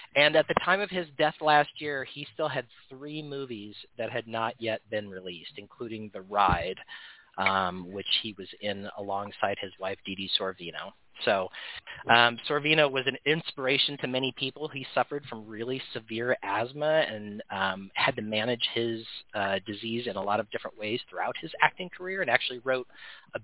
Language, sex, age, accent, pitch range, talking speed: English, male, 40-59, American, 105-140 Hz, 180 wpm